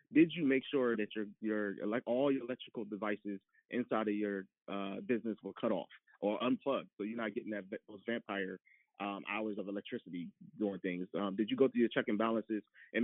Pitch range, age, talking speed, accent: 105-125 Hz, 20-39, 205 wpm, American